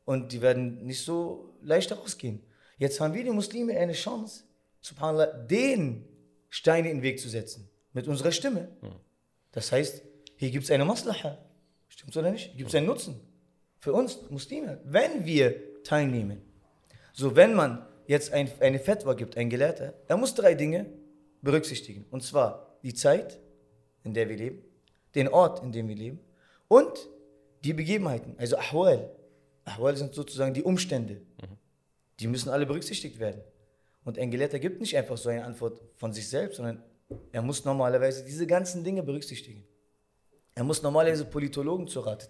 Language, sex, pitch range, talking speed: German, male, 115-155 Hz, 165 wpm